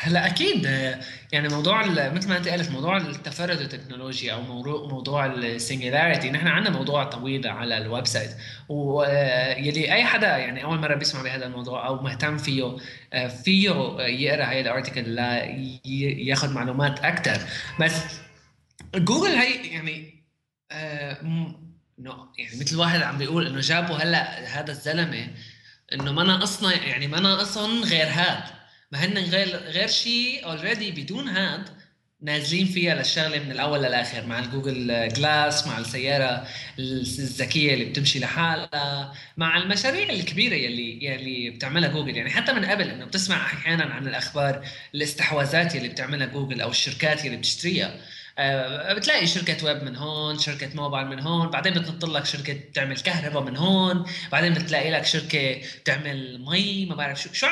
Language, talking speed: Arabic, 145 wpm